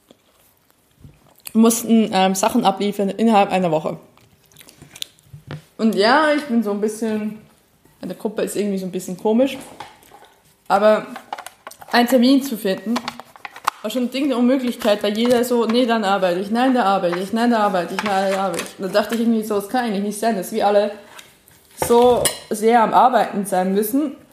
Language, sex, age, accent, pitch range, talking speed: German, female, 20-39, German, 195-255 Hz, 185 wpm